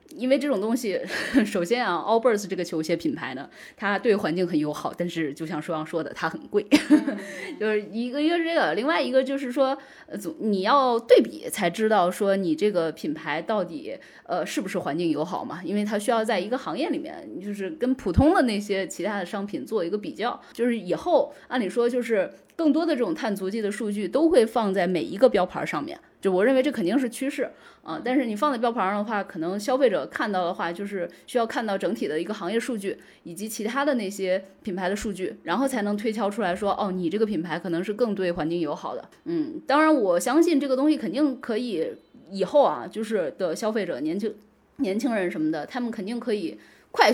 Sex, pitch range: female, 185-260 Hz